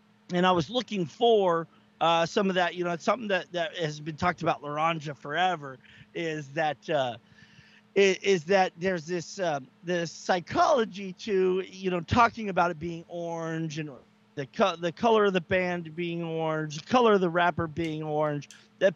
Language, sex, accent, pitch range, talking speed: English, male, American, 155-195 Hz, 180 wpm